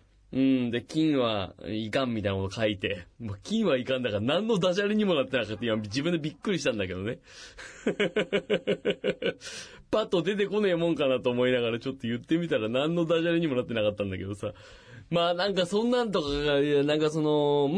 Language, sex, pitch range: Japanese, male, 110-180 Hz